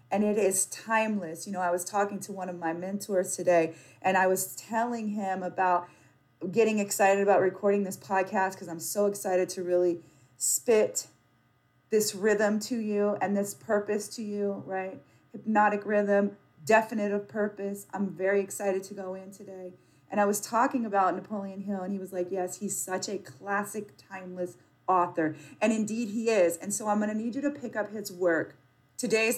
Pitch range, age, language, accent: 180-210 Hz, 30-49, English, American